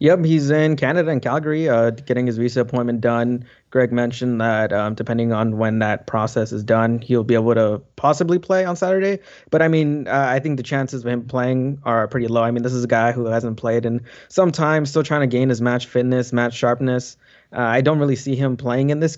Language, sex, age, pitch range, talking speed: English, male, 20-39, 120-145 Hz, 235 wpm